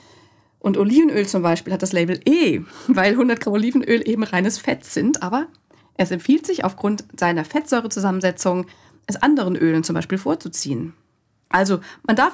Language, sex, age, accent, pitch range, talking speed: German, female, 40-59, German, 170-230 Hz, 155 wpm